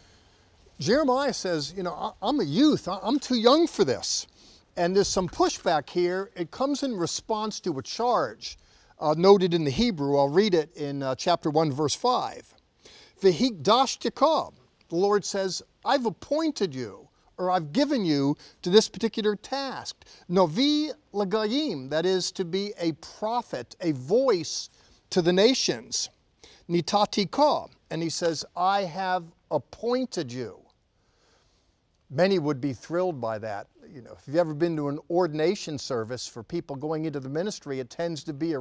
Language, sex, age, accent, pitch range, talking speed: English, male, 50-69, American, 145-195 Hz, 150 wpm